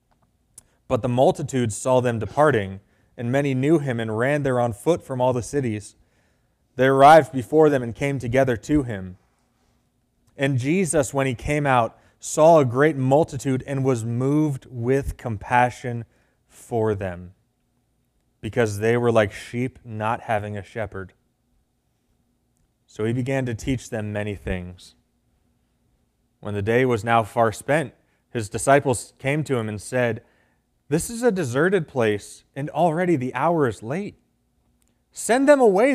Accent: American